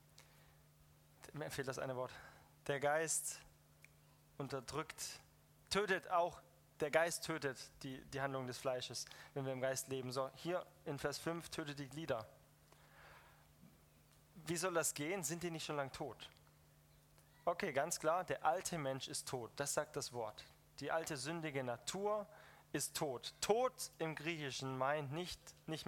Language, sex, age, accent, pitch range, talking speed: German, male, 20-39, German, 130-165 Hz, 150 wpm